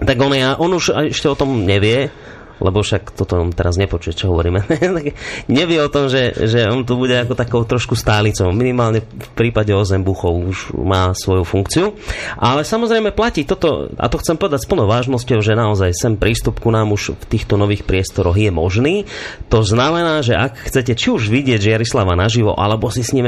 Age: 30-49